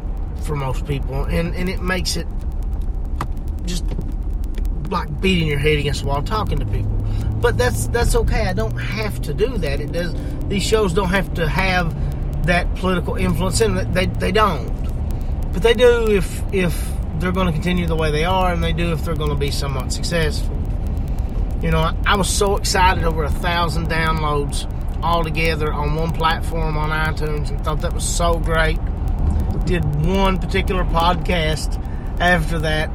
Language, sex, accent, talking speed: English, male, American, 175 wpm